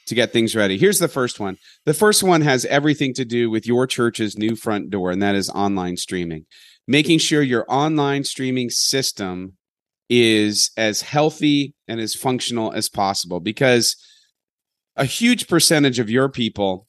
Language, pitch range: English, 110-150 Hz